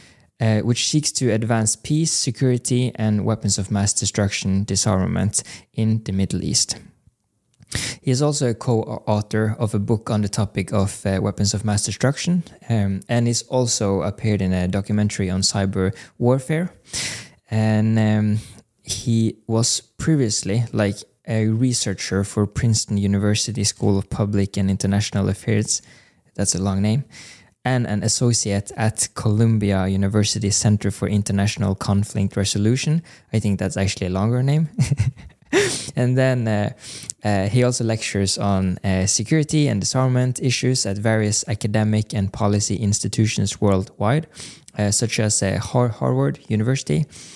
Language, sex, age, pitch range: English, male, 20-39, 100-125 Hz